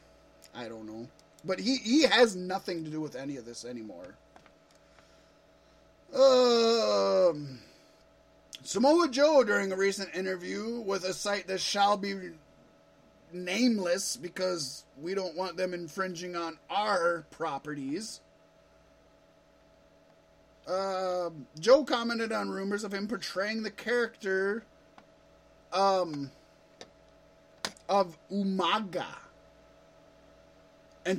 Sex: male